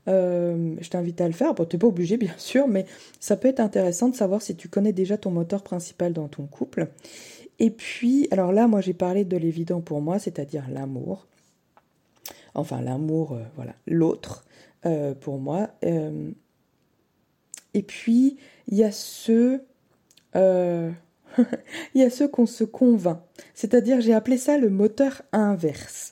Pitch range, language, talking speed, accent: 165-235 Hz, French, 155 wpm, French